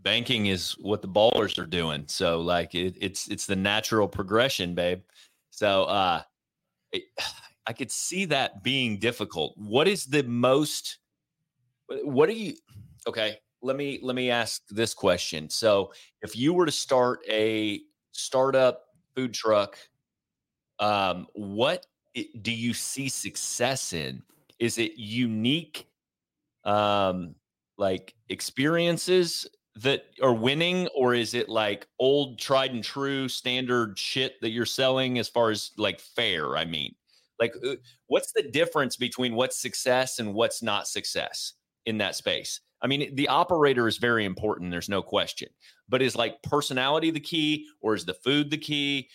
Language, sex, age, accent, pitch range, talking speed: English, male, 30-49, American, 105-140 Hz, 145 wpm